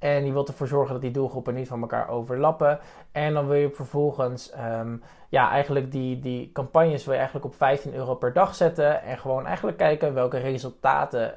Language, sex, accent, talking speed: Dutch, male, Dutch, 195 wpm